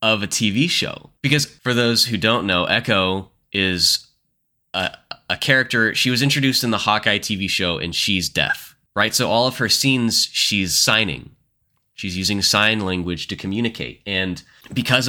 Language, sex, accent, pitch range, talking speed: English, male, American, 90-115 Hz, 165 wpm